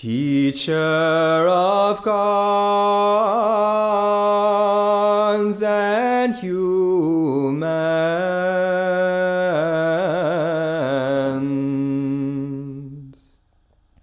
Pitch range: 155-205 Hz